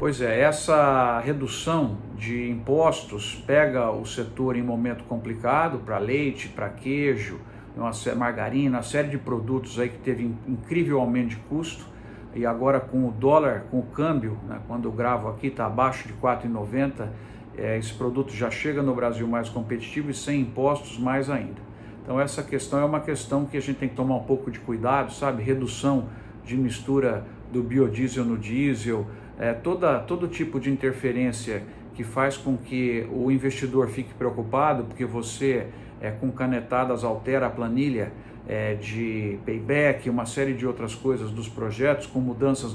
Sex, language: male, Portuguese